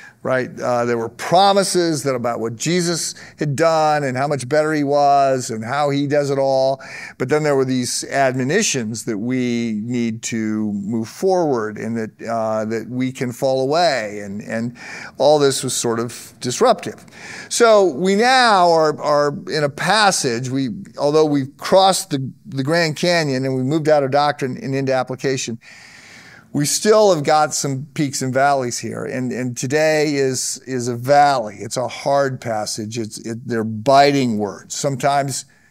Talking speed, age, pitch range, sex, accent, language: 170 wpm, 50-69, 120-145 Hz, male, American, English